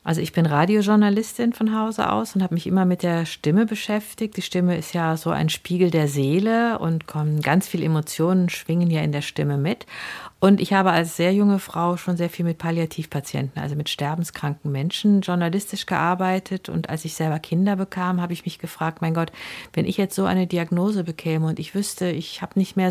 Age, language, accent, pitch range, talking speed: 50-69, German, German, 160-190 Hz, 205 wpm